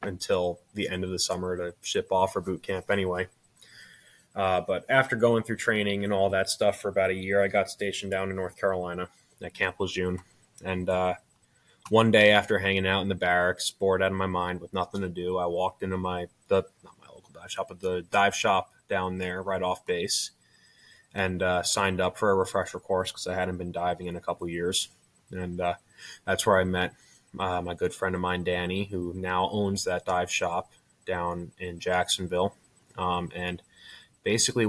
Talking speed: 200 wpm